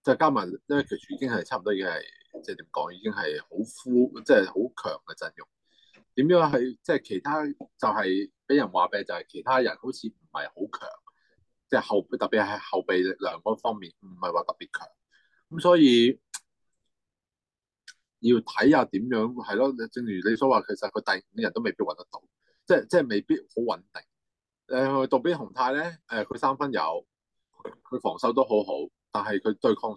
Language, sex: Chinese, male